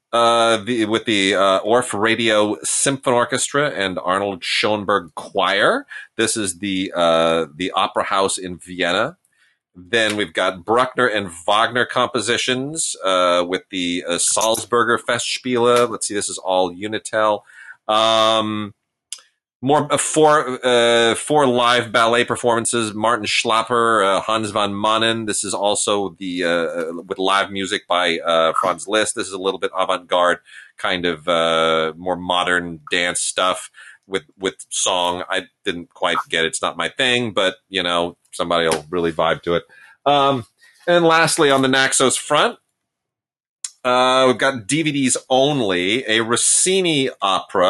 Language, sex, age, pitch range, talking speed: English, male, 30-49, 90-125 Hz, 150 wpm